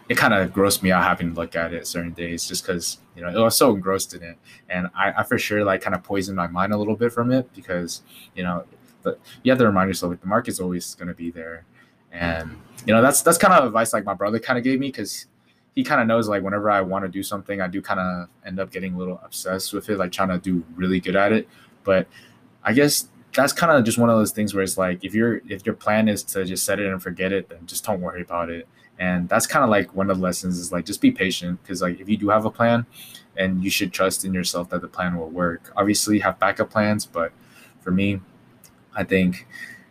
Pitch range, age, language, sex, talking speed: 90-100 Hz, 20-39, English, male, 270 wpm